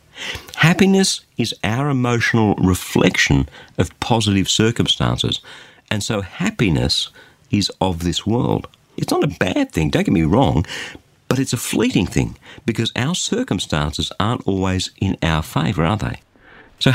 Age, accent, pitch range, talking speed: 50-69, Australian, 95-130 Hz, 140 wpm